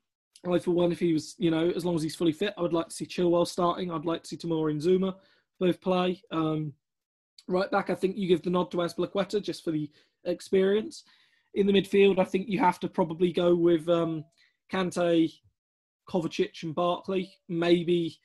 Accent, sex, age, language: British, male, 20-39, English